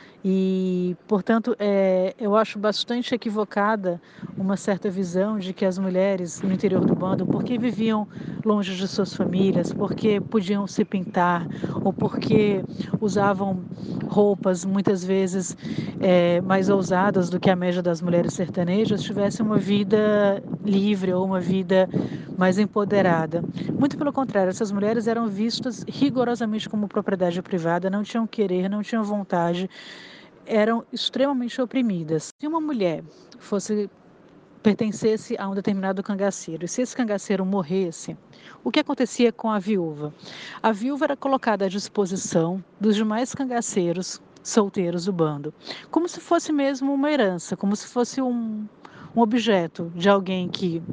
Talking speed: 140 wpm